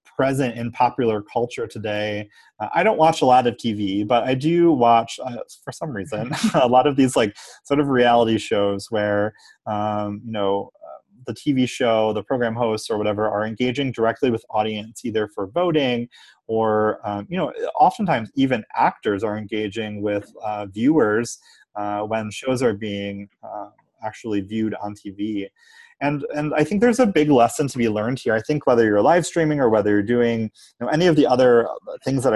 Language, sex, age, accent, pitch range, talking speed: English, male, 30-49, American, 105-130 Hz, 190 wpm